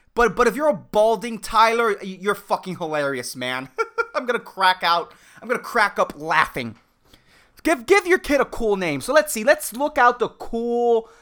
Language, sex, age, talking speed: English, male, 20-39, 185 wpm